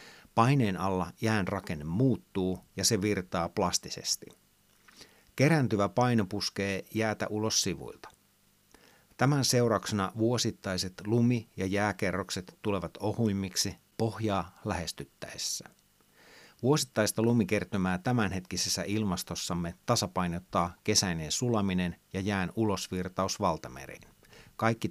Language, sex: Finnish, male